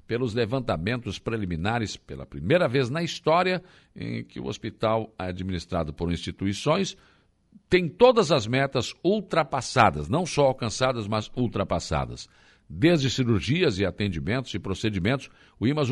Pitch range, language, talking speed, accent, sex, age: 95-135 Hz, Portuguese, 125 wpm, Brazilian, male, 60-79